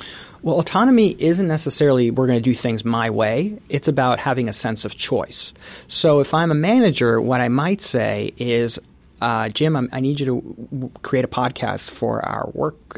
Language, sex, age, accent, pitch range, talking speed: English, male, 30-49, American, 120-150 Hz, 205 wpm